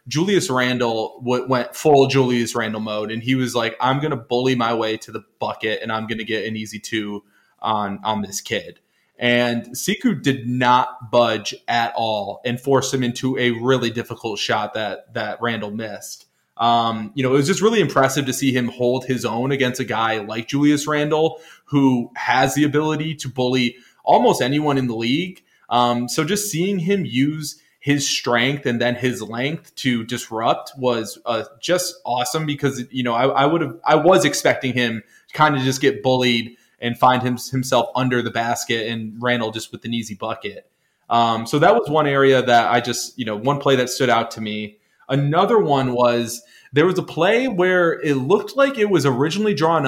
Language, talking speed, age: English, 195 wpm, 20-39